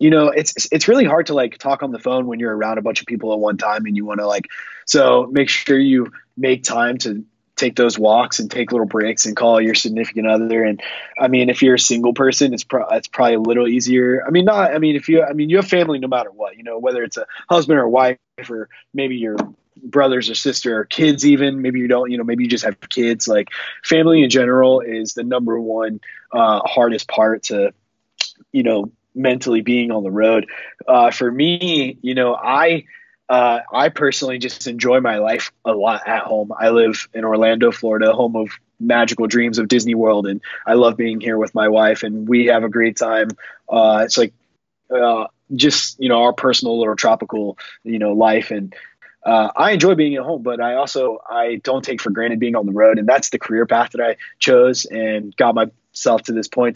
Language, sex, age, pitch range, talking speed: English, male, 20-39, 110-130 Hz, 225 wpm